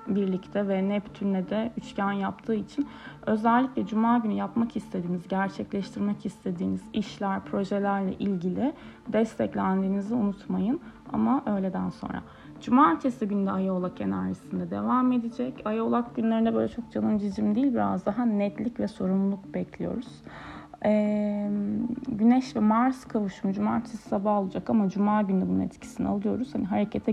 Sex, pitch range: female, 195-230 Hz